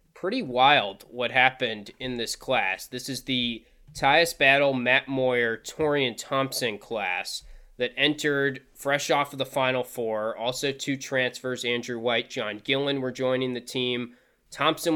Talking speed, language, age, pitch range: 150 wpm, English, 20-39, 120-140 Hz